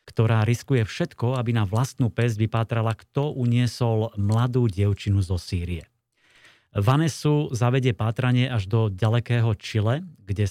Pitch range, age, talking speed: 105-125 Hz, 30-49, 125 wpm